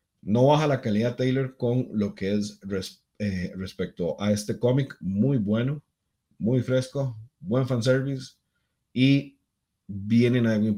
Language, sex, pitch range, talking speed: Spanish, male, 110-155 Hz, 135 wpm